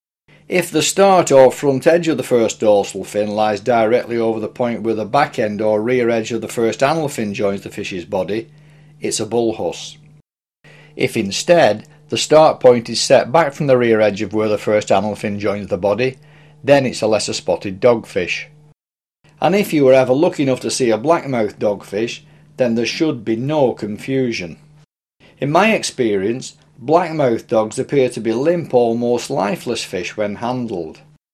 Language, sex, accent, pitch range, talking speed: English, male, British, 110-150 Hz, 180 wpm